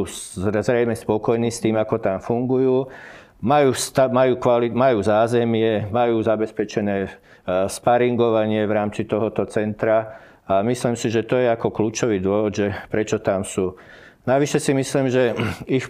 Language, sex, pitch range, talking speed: Slovak, male, 105-115 Hz, 140 wpm